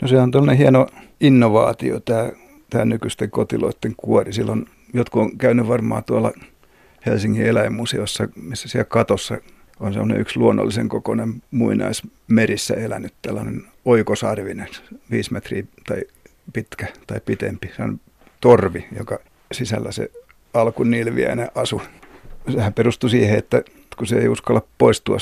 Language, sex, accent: Finnish, male, native